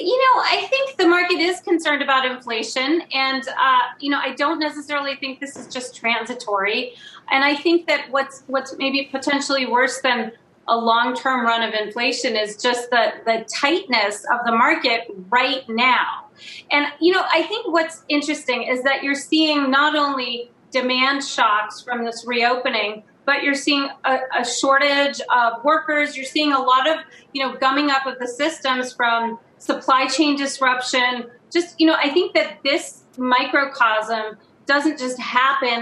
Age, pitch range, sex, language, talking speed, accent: 30-49, 245-295 Hz, female, English, 170 wpm, American